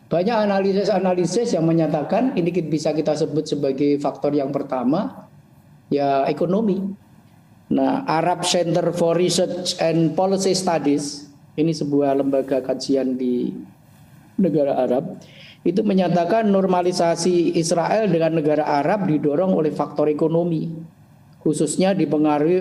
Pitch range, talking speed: 145-175 Hz, 110 wpm